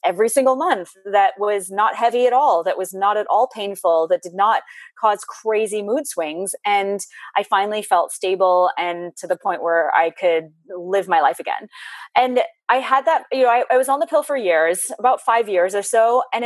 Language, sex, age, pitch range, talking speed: English, female, 30-49, 180-240 Hz, 210 wpm